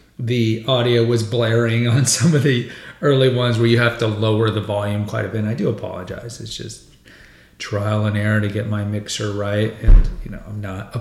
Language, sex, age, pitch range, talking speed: English, male, 30-49, 110-125 Hz, 215 wpm